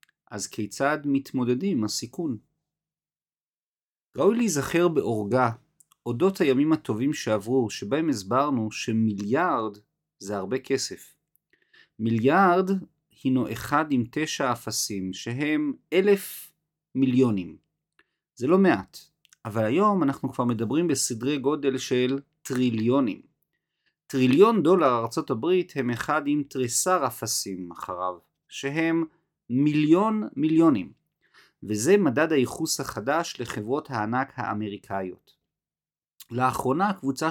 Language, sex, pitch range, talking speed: Hebrew, male, 115-150 Hz, 95 wpm